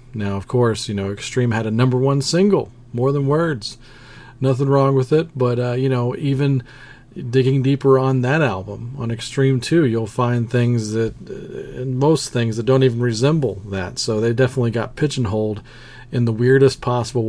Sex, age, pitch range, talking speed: male, 40-59, 110-135 Hz, 180 wpm